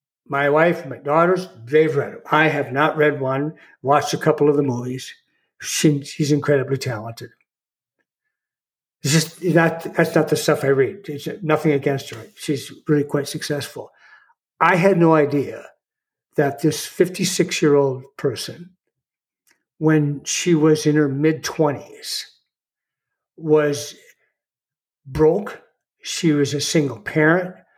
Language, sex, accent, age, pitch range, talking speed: English, male, American, 60-79, 145-170 Hz, 135 wpm